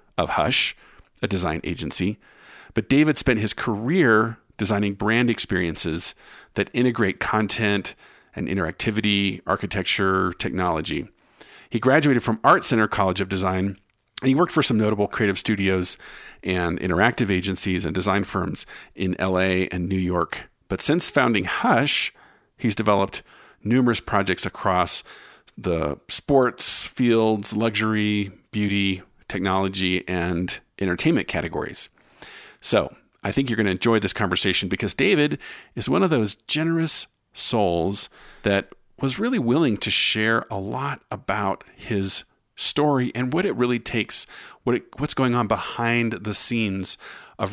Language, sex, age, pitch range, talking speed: English, male, 50-69, 95-115 Hz, 135 wpm